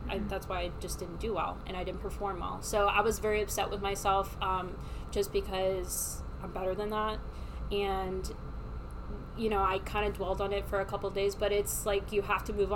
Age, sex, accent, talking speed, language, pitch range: 20-39, female, American, 225 wpm, English, 190-210 Hz